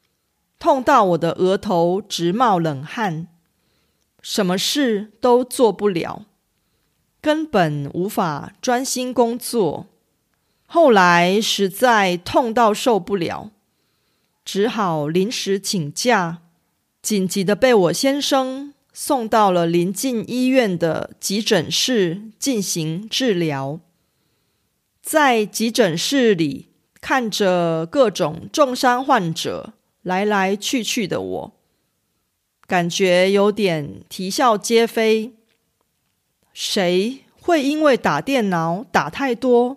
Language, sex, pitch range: Korean, female, 180-245 Hz